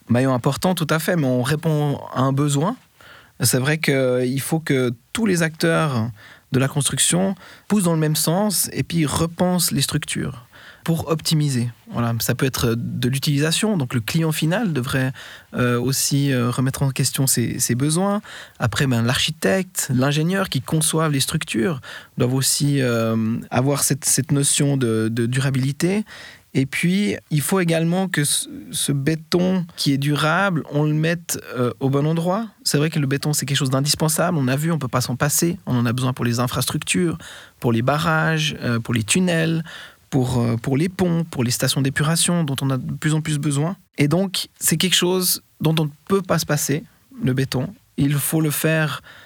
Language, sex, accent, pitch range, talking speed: French, male, French, 130-165 Hz, 190 wpm